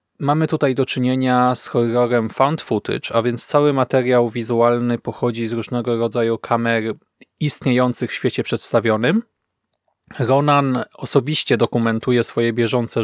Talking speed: 125 wpm